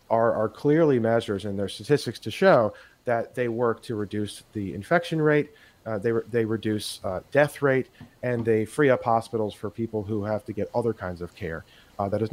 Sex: male